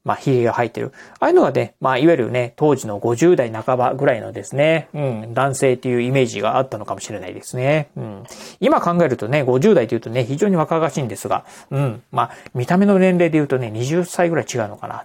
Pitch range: 125-185 Hz